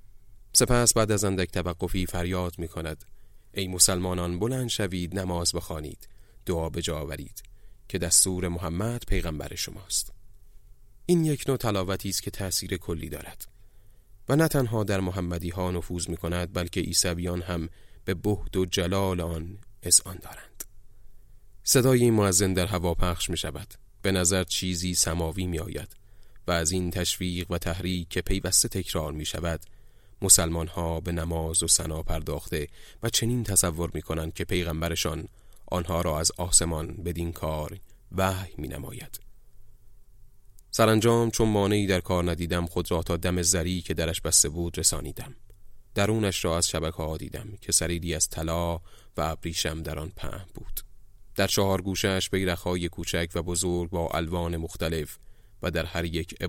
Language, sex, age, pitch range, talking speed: Persian, male, 30-49, 85-100 Hz, 145 wpm